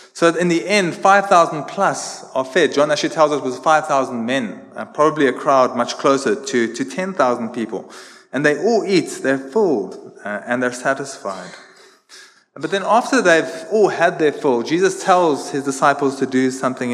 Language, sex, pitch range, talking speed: English, male, 135-200 Hz, 170 wpm